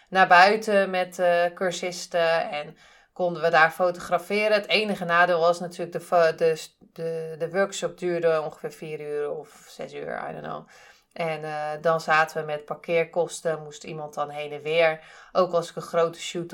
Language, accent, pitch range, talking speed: Dutch, Dutch, 165-200 Hz, 185 wpm